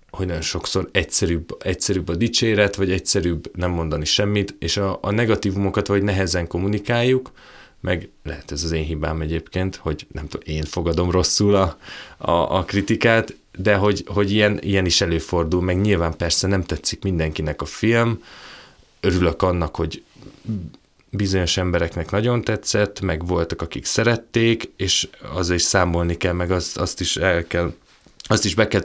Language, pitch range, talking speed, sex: Hungarian, 85-105 Hz, 160 wpm, male